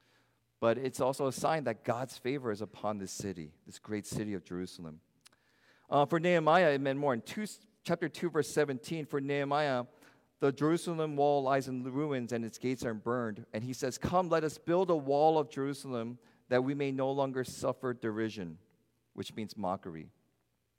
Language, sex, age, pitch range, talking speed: English, male, 40-59, 115-155 Hz, 180 wpm